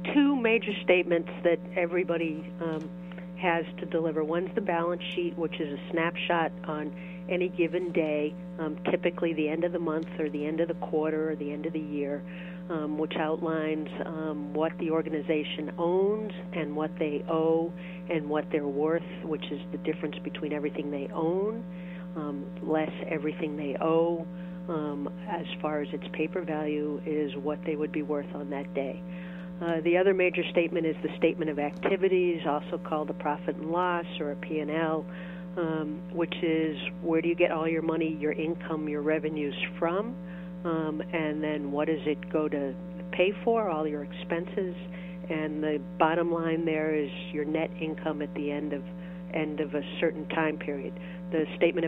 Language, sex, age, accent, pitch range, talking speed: English, female, 50-69, American, 155-180 Hz, 175 wpm